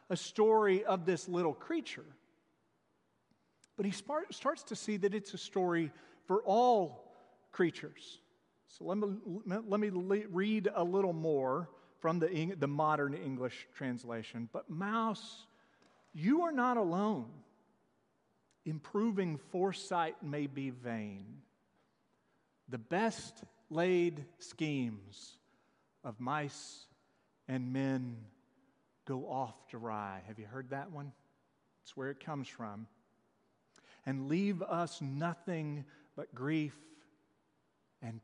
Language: English